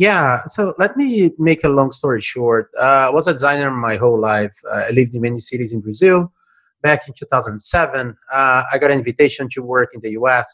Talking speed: 215 wpm